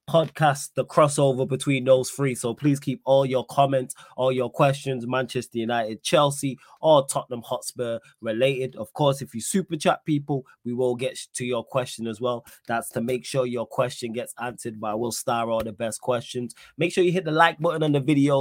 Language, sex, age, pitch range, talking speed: English, male, 20-39, 120-145 Hz, 200 wpm